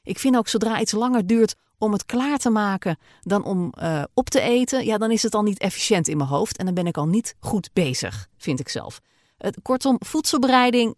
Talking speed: 230 wpm